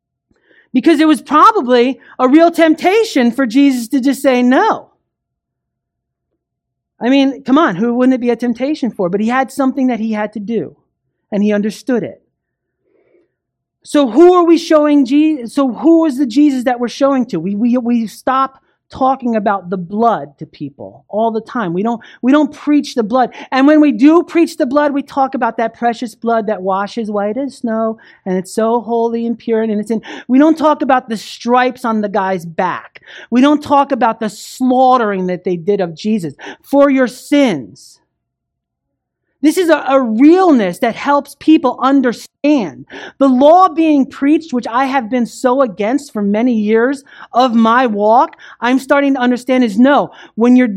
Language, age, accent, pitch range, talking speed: English, 40-59, American, 230-290 Hz, 185 wpm